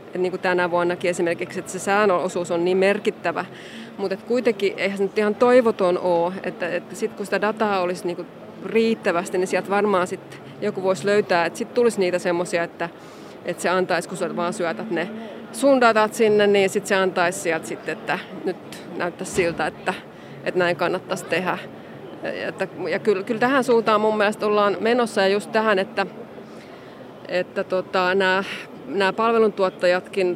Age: 30-49